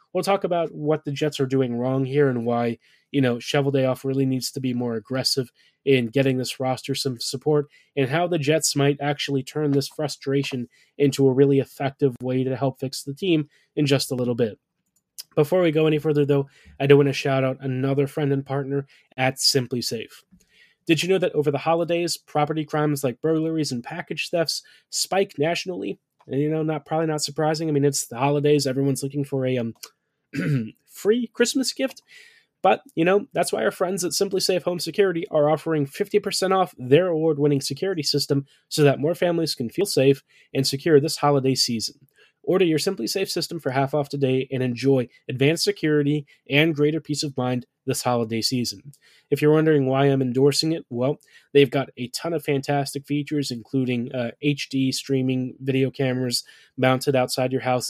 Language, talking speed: English, 195 wpm